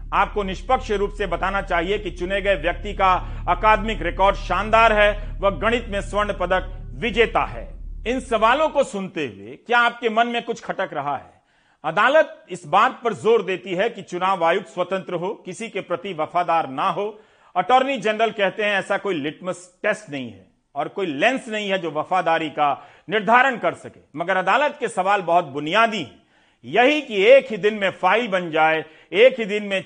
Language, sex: Hindi, male